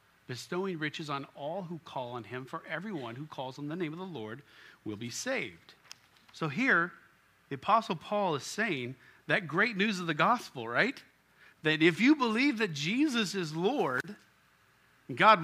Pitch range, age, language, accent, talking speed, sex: 155-230 Hz, 50-69, English, American, 170 wpm, male